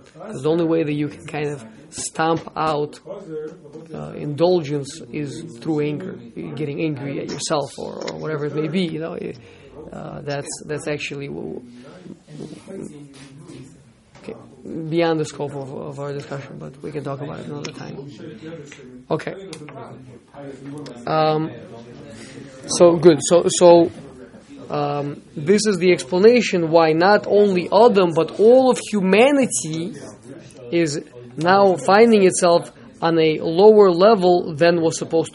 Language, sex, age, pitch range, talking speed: English, male, 20-39, 145-180 Hz, 130 wpm